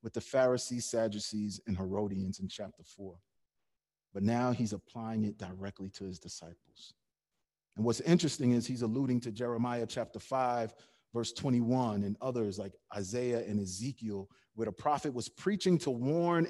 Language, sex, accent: English, male, American